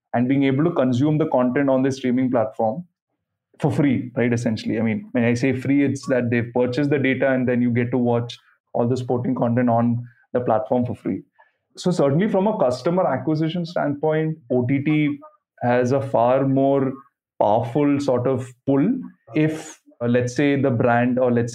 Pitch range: 120-140 Hz